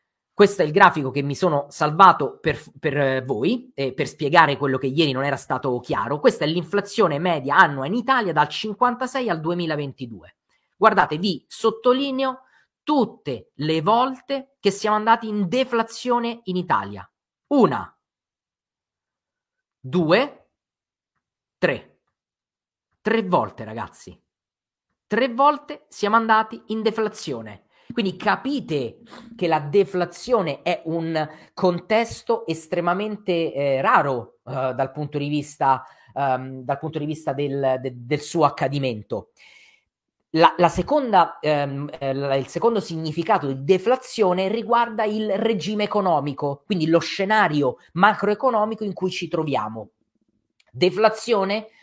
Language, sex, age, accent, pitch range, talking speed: Italian, male, 40-59, native, 145-220 Hz, 115 wpm